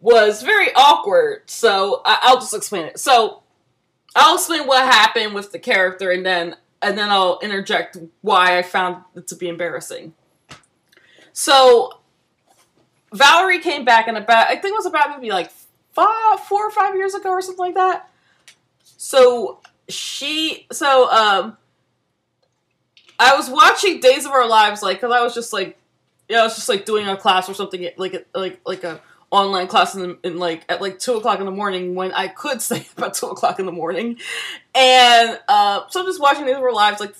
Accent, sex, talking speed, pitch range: American, female, 185 wpm, 195-305 Hz